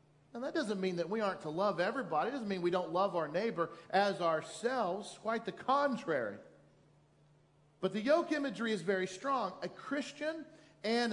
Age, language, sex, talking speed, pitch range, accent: 40-59, English, male, 180 wpm, 170-230 Hz, American